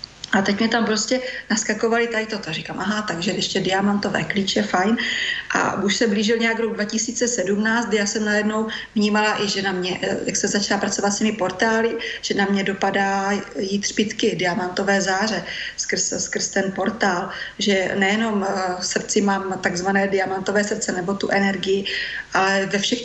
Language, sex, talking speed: Slovak, female, 165 wpm